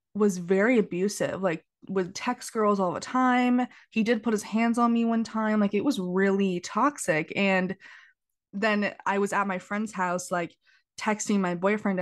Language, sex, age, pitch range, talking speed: English, female, 20-39, 180-215 Hz, 180 wpm